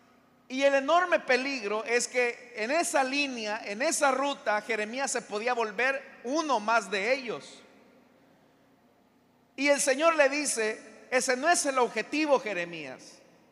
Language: Spanish